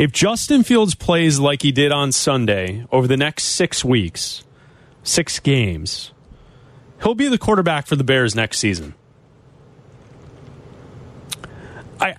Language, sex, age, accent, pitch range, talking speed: English, male, 30-49, American, 135-180 Hz, 130 wpm